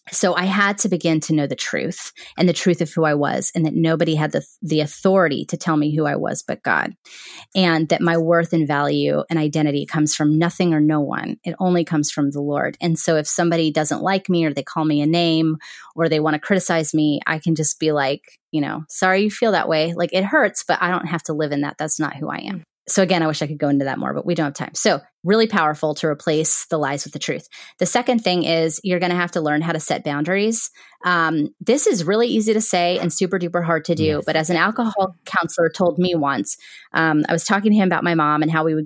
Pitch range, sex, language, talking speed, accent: 155-180 Hz, female, English, 265 wpm, American